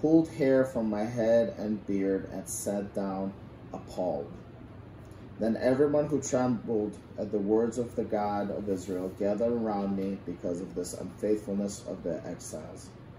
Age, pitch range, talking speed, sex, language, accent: 30-49, 95-115 Hz, 150 wpm, male, English, American